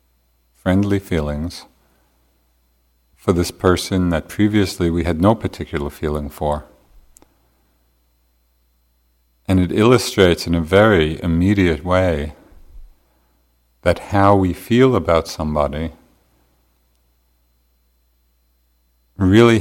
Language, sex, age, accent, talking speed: English, male, 50-69, American, 85 wpm